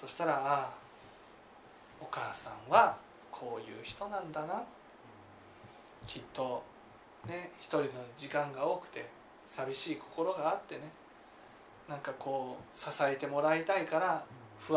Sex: male